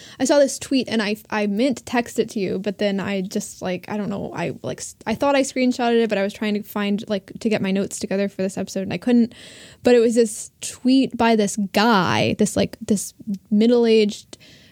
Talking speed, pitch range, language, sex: 235 wpm, 200-235 Hz, English, female